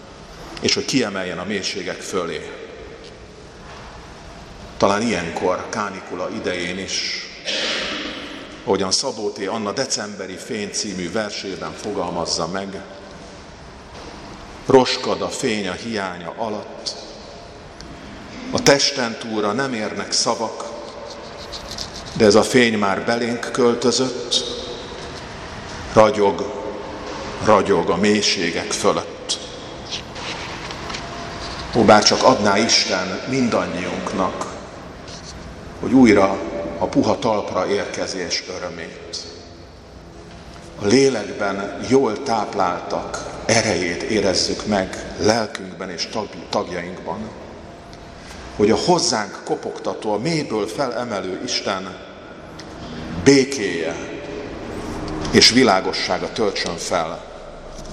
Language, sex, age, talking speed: Hungarian, male, 50-69, 80 wpm